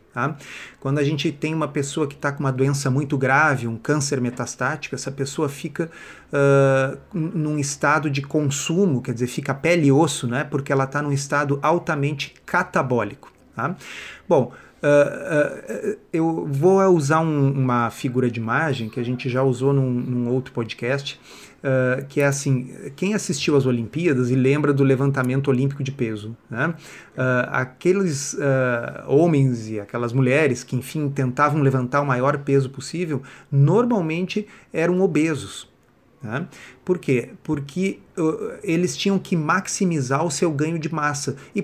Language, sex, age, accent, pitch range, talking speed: Portuguese, male, 30-49, Brazilian, 130-160 Hz, 150 wpm